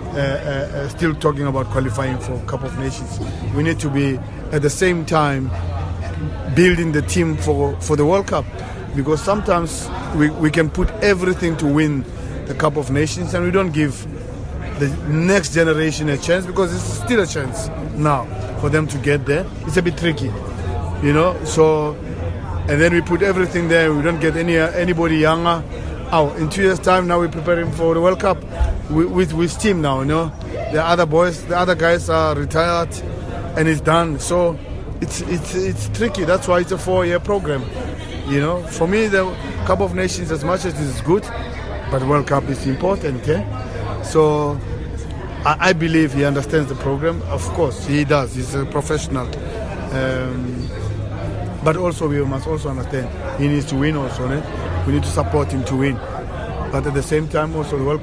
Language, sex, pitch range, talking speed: English, male, 110-165 Hz, 190 wpm